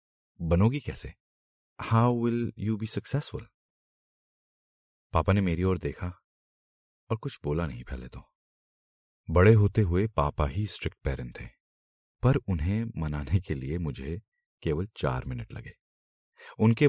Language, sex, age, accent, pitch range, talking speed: Hindi, male, 40-59, native, 75-110 Hz, 130 wpm